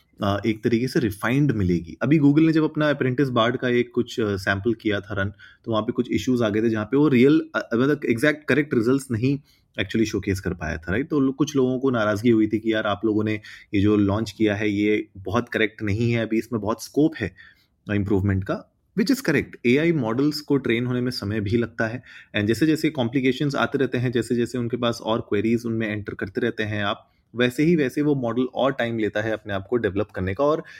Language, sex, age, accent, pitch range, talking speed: Hindi, male, 30-49, native, 110-140 Hz, 230 wpm